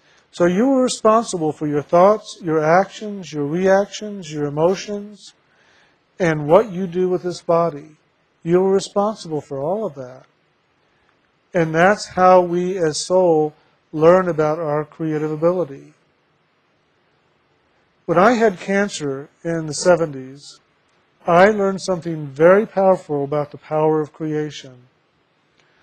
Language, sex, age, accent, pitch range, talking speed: English, male, 50-69, American, 155-185 Hz, 130 wpm